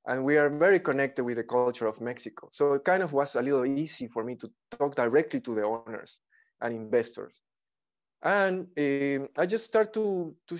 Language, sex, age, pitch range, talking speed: English, male, 20-39, 125-160 Hz, 200 wpm